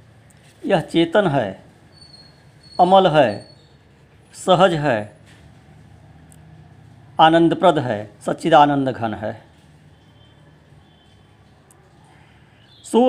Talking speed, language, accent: 60 wpm, Hindi, native